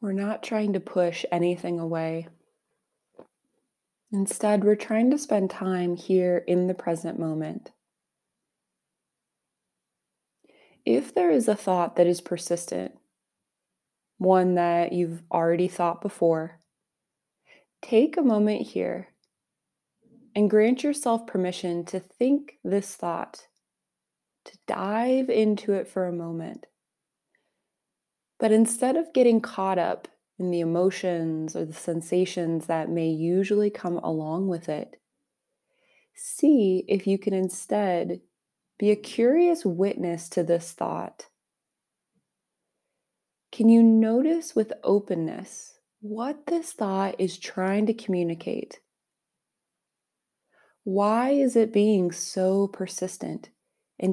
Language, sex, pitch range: English, female, 175-220 Hz